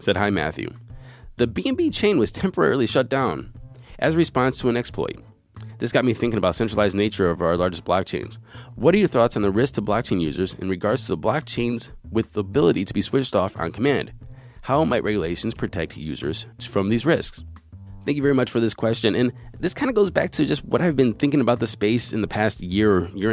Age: 20-39